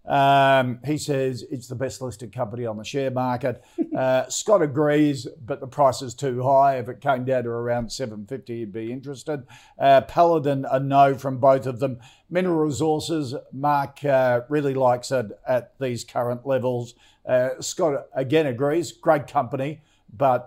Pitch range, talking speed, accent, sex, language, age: 120-140 Hz, 165 wpm, Australian, male, English, 50-69